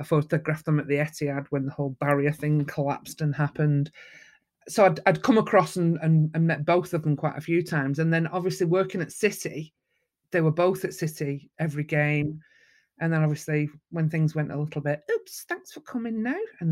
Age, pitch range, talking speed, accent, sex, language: 40-59, 150-175 Hz, 210 wpm, British, male, English